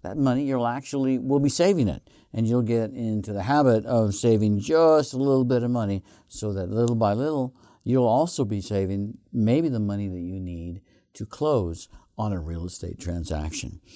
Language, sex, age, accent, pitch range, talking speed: English, male, 60-79, American, 95-125 Hz, 185 wpm